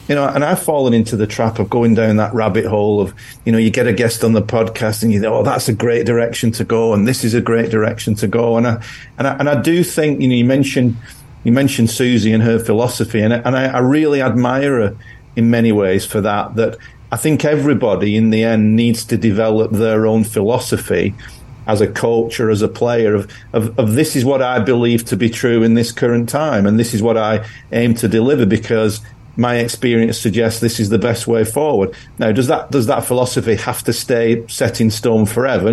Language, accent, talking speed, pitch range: English, British, 235 wpm, 110-125 Hz